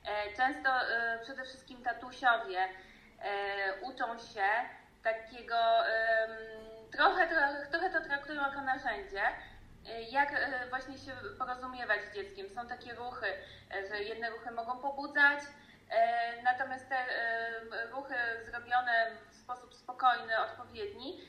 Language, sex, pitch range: Polish, female, 210-265 Hz